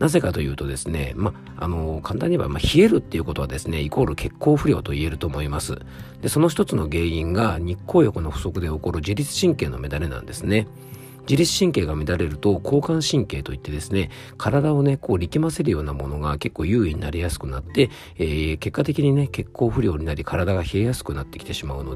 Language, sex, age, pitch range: Japanese, male, 40-59, 75-115 Hz